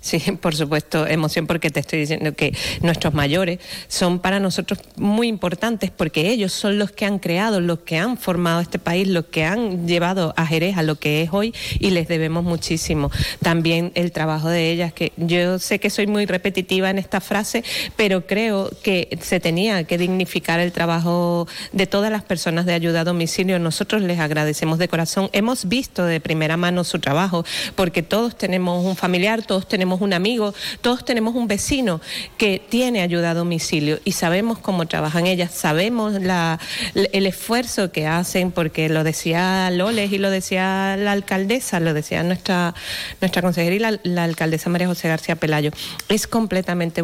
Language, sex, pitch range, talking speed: Spanish, female, 170-205 Hz, 180 wpm